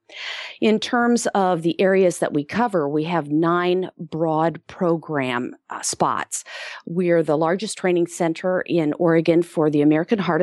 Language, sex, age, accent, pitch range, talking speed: English, female, 40-59, American, 150-185 Hz, 150 wpm